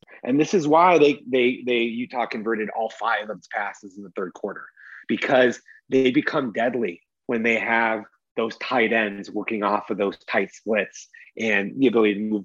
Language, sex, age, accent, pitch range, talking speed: English, male, 30-49, American, 110-130 Hz, 190 wpm